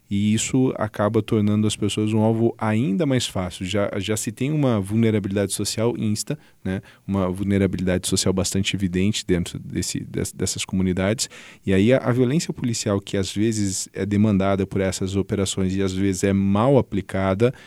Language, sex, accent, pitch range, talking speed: Portuguese, male, Brazilian, 95-115 Hz, 170 wpm